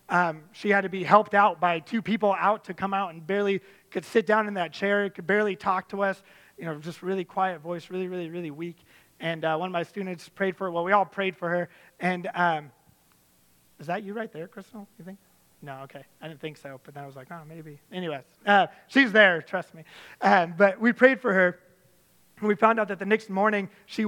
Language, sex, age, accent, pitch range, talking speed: English, male, 30-49, American, 170-210 Hz, 240 wpm